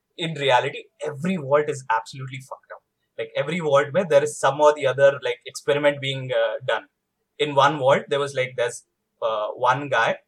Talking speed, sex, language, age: 195 wpm, male, Hindi, 20-39